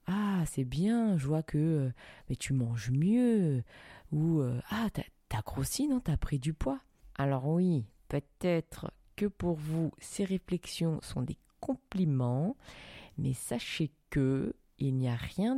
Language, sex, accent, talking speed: French, female, French, 155 wpm